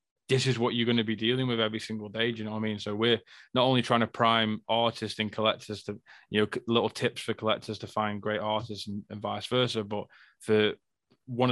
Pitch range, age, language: 110-120 Hz, 20-39, English